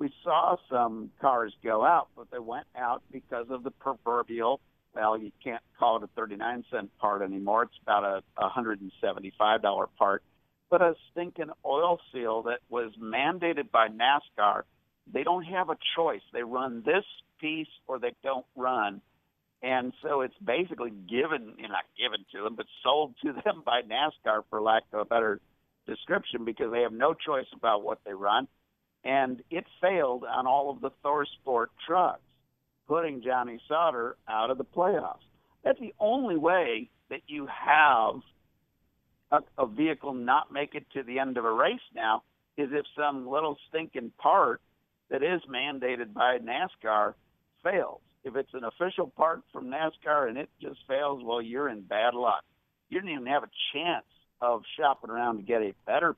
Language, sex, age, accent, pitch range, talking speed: English, male, 60-79, American, 115-155 Hz, 170 wpm